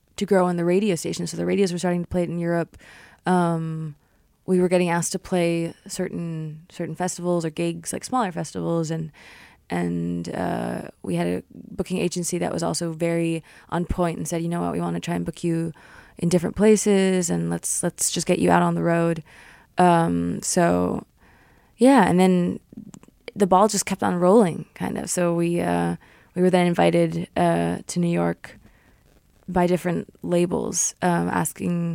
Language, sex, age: English, female, 20-39